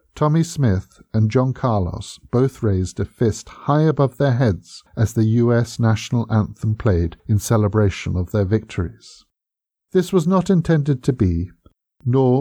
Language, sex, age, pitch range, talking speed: English, male, 50-69, 100-130 Hz, 150 wpm